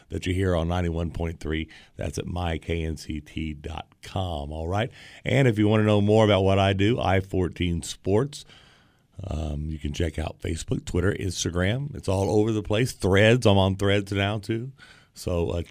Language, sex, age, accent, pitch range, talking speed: English, male, 40-59, American, 85-105 Hz, 170 wpm